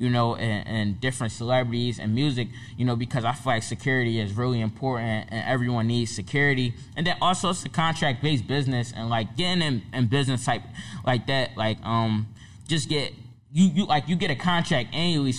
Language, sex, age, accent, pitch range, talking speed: English, male, 10-29, American, 115-135 Hz, 195 wpm